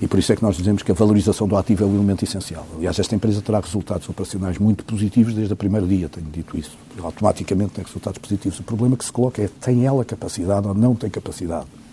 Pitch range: 100-125 Hz